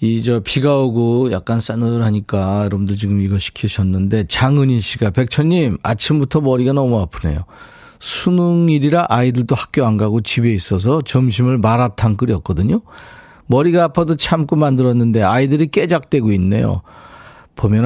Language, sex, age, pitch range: Korean, male, 40-59, 110-145 Hz